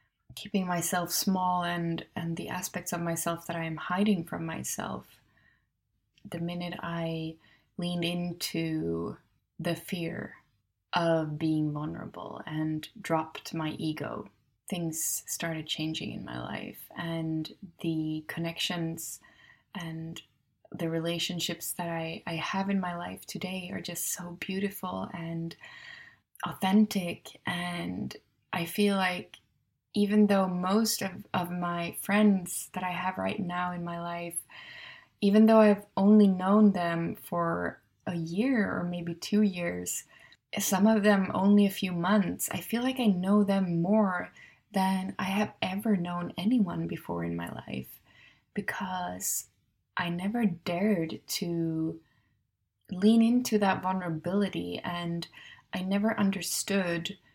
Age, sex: 20-39, female